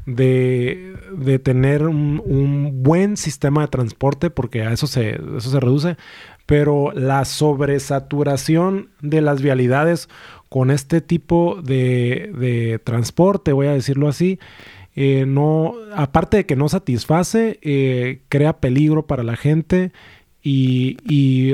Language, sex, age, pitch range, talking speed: Spanish, male, 30-49, 135-170 Hz, 135 wpm